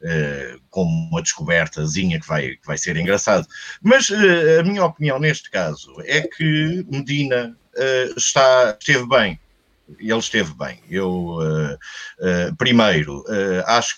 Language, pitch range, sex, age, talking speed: Portuguese, 115-170 Hz, male, 50-69, 105 wpm